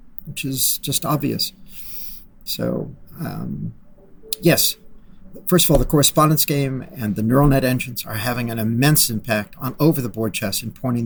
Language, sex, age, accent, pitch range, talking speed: English, male, 50-69, American, 110-145 Hz, 150 wpm